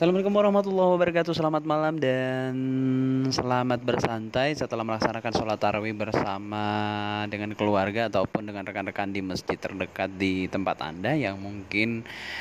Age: 20-39